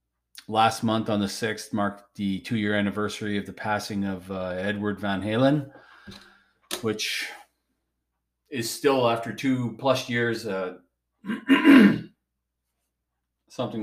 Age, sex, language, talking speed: 40-59, male, English, 110 wpm